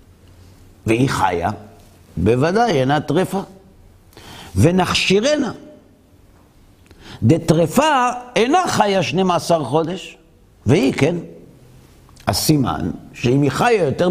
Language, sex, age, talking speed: Hebrew, male, 50-69, 75 wpm